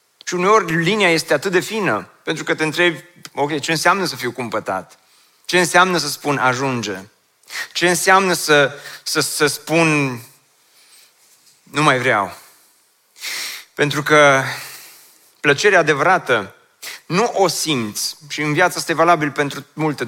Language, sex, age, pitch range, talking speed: Romanian, male, 30-49, 125-165 Hz, 135 wpm